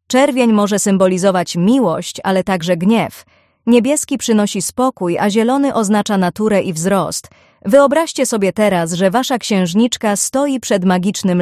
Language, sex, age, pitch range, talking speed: Polish, female, 30-49, 185-235 Hz, 130 wpm